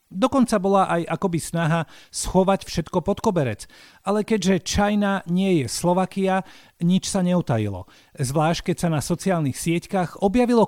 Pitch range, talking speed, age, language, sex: 125-190 Hz, 140 wpm, 40-59, Slovak, male